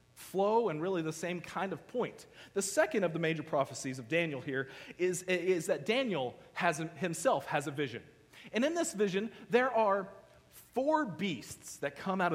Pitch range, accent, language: 135-190 Hz, American, English